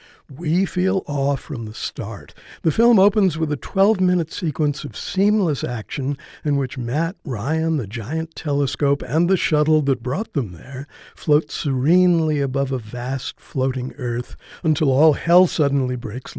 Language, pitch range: English, 130-165 Hz